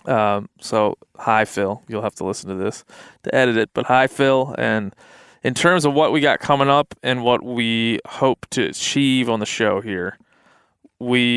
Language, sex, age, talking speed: English, male, 20-39, 190 wpm